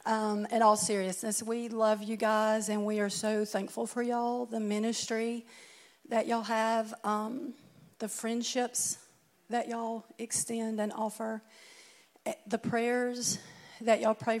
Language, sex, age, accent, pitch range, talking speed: English, female, 50-69, American, 205-230 Hz, 140 wpm